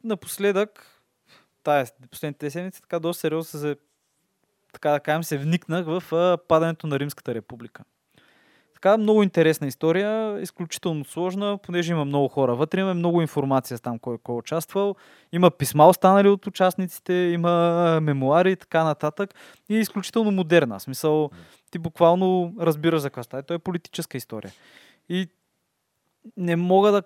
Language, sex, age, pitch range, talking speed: Bulgarian, male, 20-39, 135-175 Hz, 150 wpm